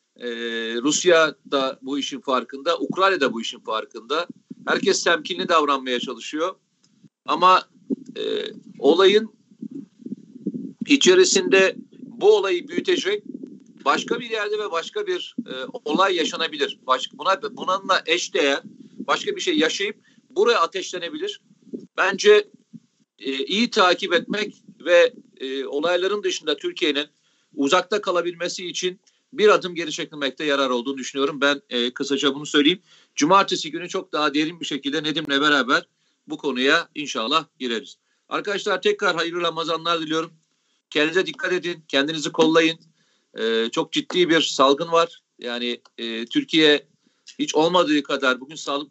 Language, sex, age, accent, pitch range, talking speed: Turkish, male, 50-69, native, 145-230 Hz, 125 wpm